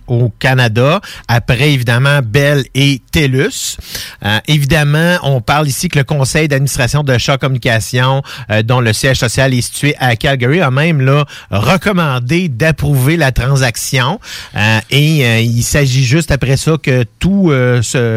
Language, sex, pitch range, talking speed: French, male, 120-150 Hz, 155 wpm